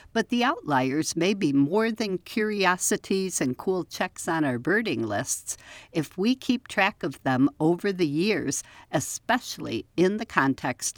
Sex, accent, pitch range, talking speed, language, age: female, American, 140-190 Hz, 155 wpm, English, 60-79